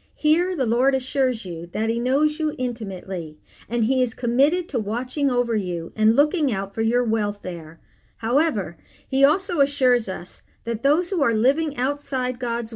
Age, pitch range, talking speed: 50-69, 210-275 Hz, 170 wpm